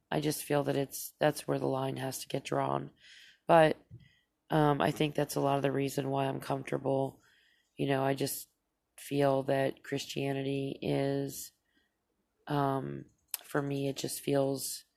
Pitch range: 140-160 Hz